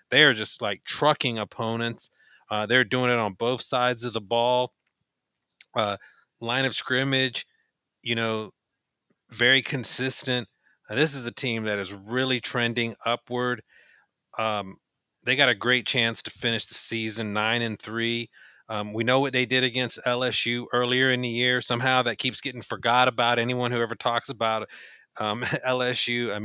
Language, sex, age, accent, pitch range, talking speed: English, male, 30-49, American, 110-125 Hz, 165 wpm